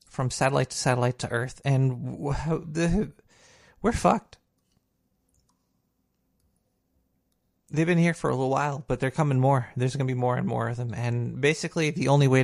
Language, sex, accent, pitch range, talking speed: English, male, American, 125-170 Hz, 165 wpm